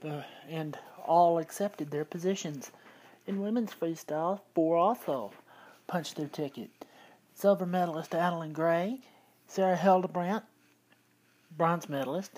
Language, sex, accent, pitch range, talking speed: English, male, American, 155-185 Hz, 100 wpm